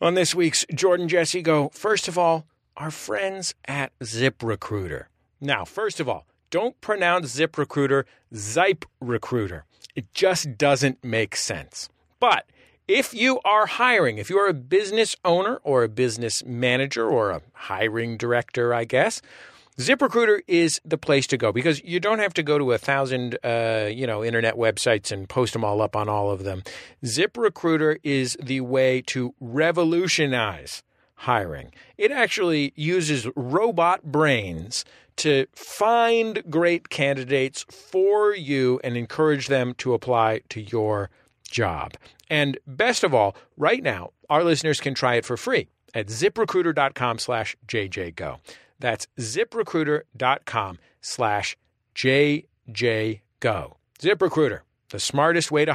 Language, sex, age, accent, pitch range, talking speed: English, male, 40-59, American, 120-180 Hz, 140 wpm